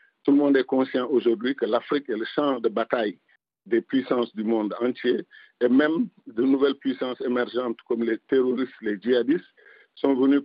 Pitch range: 120-145 Hz